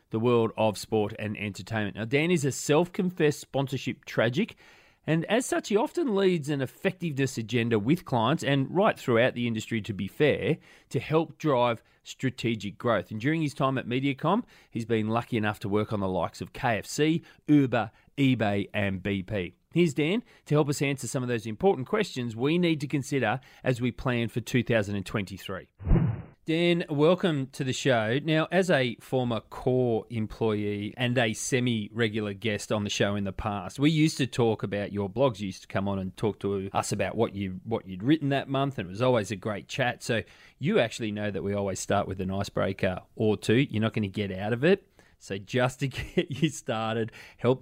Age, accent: 30-49, Australian